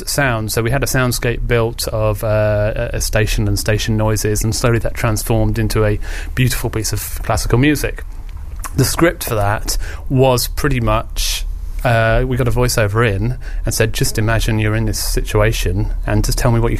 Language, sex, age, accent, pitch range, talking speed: English, male, 30-49, British, 100-115 Hz, 185 wpm